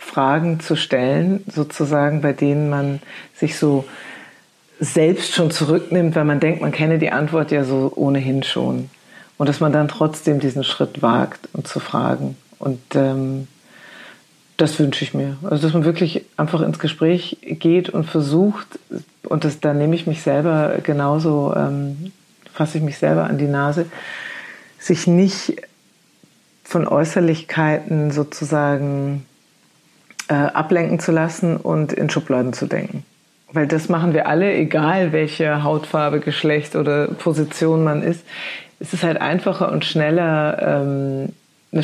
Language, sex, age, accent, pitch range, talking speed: German, female, 40-59, German, 145-170 Hz, 145 wpm